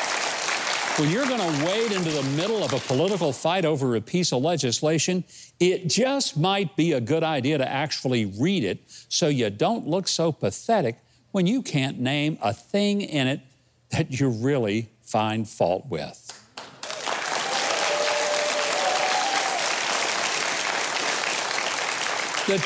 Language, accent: English, American